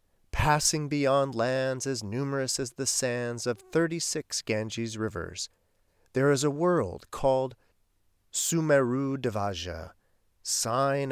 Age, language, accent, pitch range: 40-59, English, American, 100-150 Hz